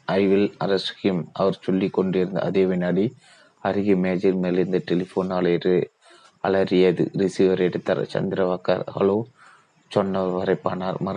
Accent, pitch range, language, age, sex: native, 90-95 Hz, Tamil, 30-49, male